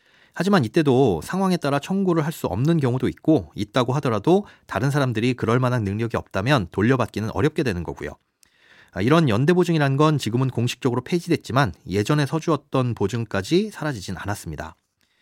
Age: 30-49